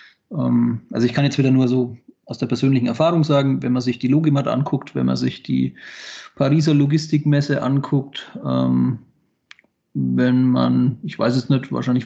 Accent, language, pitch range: German, German, 125-140 Hz